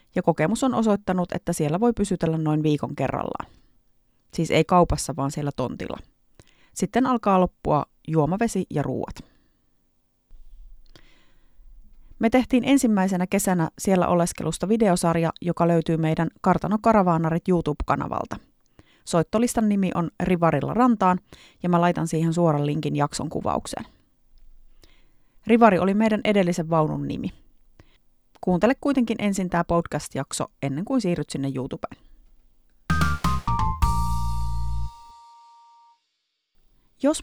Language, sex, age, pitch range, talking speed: Finnish, female, 30-49, 160-210 Hz, 105 wpm